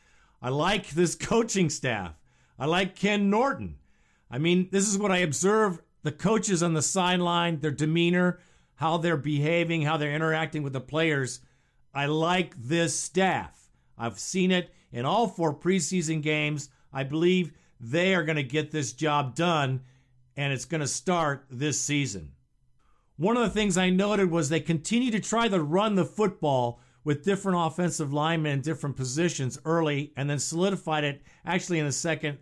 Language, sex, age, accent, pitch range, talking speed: English, male, 50-69, American, 140-185 Hz, 170 wpm